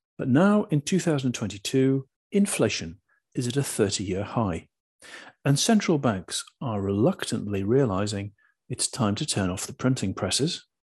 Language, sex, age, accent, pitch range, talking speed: English, male, 40-59, British, 100-140 Hz, 135 wpm